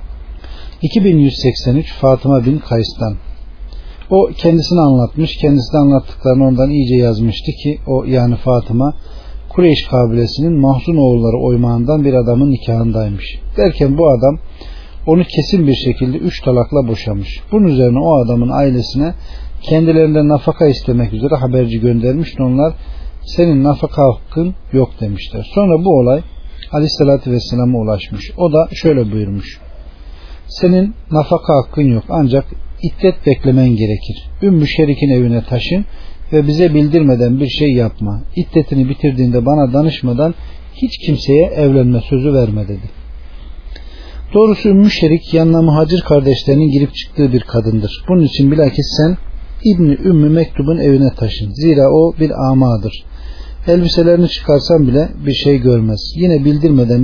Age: 50-69